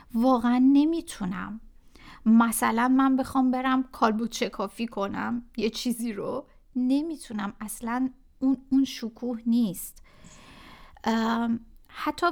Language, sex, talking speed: Persian, female, 95 wpm